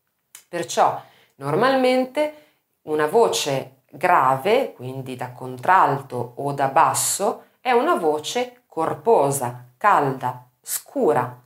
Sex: female